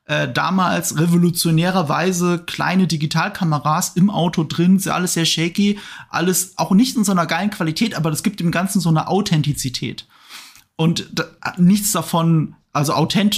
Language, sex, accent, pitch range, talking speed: German, male, German, 155-195 Hz, 135 wpm